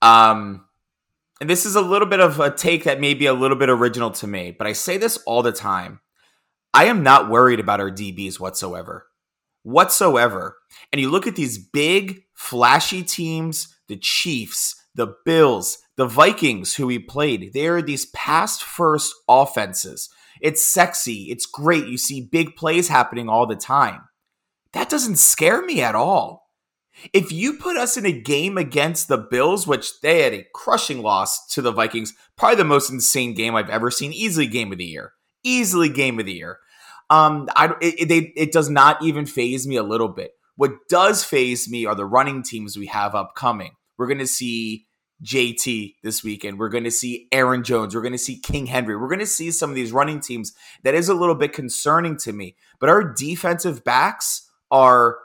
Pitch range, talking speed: 115-165 Hz, 195 wpm